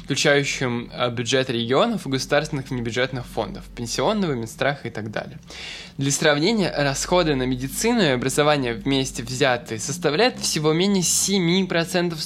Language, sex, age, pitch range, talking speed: Russian, male, 20-39, 125-160 Hz, 120 wpm